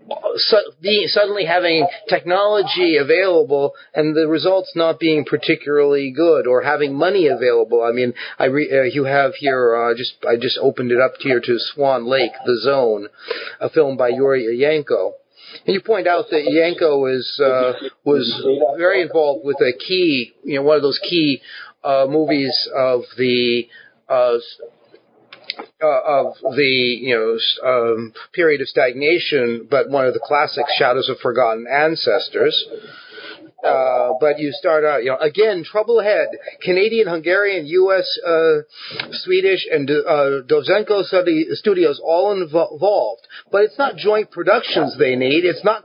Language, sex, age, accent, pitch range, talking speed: English, male, 40-59, American, 140-210 Hz, 155 wpm